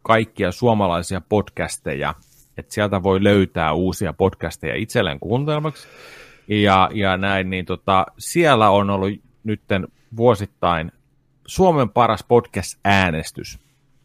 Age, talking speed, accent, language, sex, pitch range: 30-49, 105 wpm, native, Finnish, male, 95-135 Hz